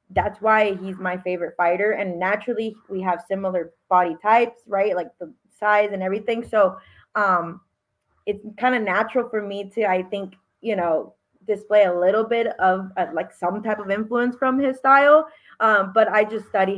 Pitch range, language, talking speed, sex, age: 185-220 Hz, English, 180 wpm, female, 20-39